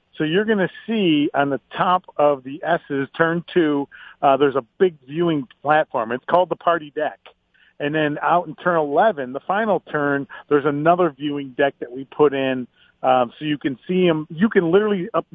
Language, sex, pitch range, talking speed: English, male, 140-180 Hz, 200 wpm